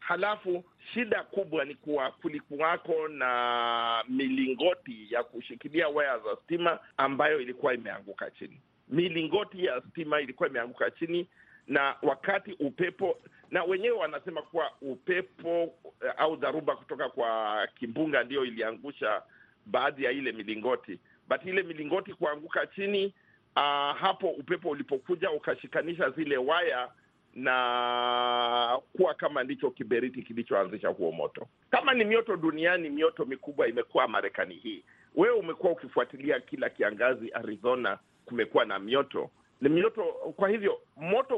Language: Swahili